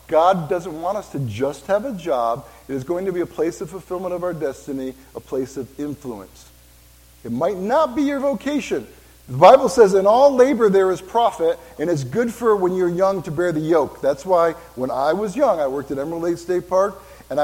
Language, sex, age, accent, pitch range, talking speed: English, male, 50-69, American, 115-185 Hz, 225 wpm